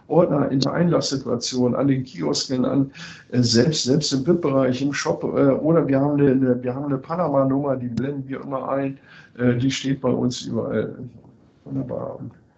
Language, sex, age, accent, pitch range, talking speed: German, male, 60-79, German, 120-145 Hz, 170 wpm